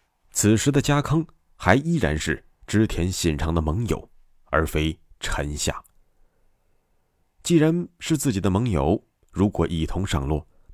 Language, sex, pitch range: Chinese, male, 75-110 Hz